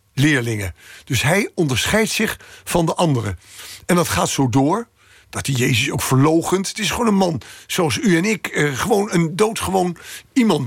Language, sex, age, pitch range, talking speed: Dutch, male, 60-79, 125-170 Hz, 175 wpm